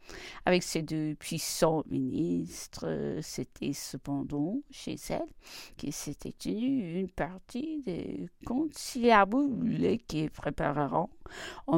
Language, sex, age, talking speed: English, female, 50-69, 95 wpm